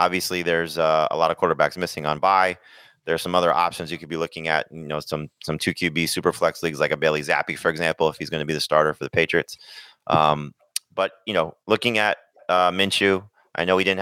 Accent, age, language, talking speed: American, 30-49, English, 245 wpm